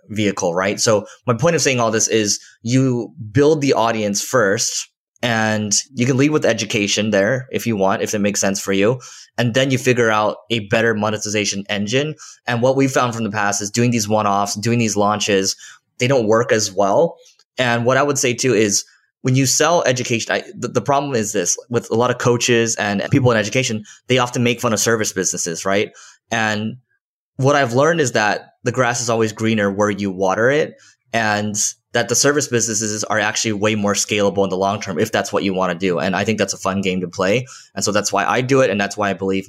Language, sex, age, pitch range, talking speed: English, male, 20-39, 100-125 Hz, 230 wpm